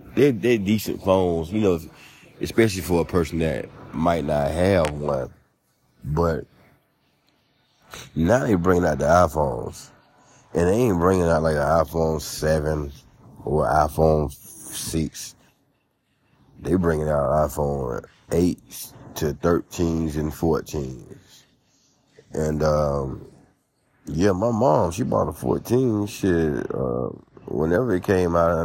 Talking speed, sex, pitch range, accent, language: 125 wpm, male, 75-100 Hz, American, English